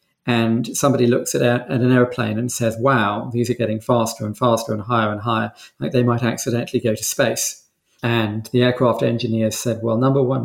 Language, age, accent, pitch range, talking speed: English, 40-59, British, 115-130 Hz, 195 wpm